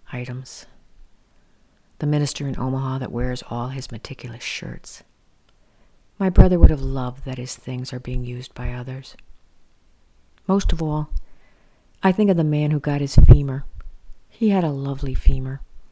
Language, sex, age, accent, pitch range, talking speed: English, female, 50-69, American, 125-150 Hz, 155 wpm